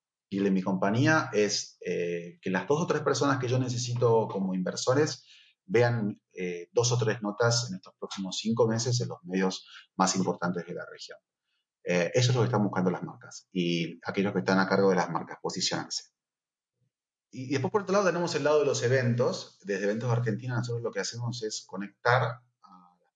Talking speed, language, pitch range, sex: 200 wpm, Spanish, 95-125 Hz, male